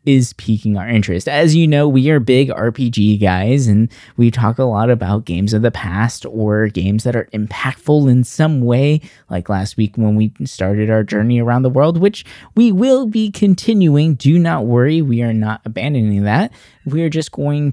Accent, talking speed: American, 195 wpm